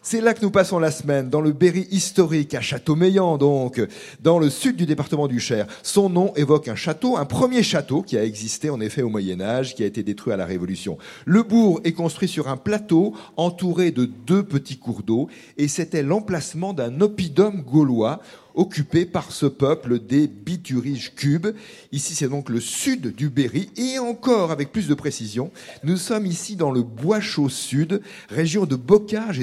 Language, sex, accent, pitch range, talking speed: French, male, French, 130-180 Hz, 190 wpm